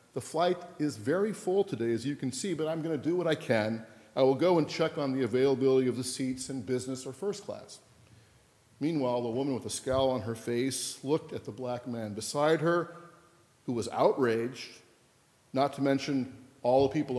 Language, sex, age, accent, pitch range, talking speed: English, male, 50-69, American, 125-170 Hz, 205 wpm